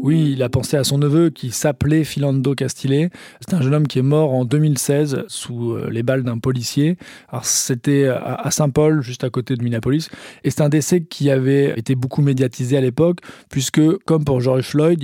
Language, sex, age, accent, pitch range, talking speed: French, male, 20-39, French, 130-155 Hz, 200 wpm